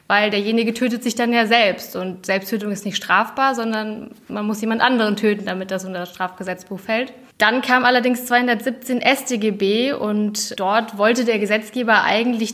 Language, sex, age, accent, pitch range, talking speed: German, female, 20-39, German, 210-245 Hz, 165 wpm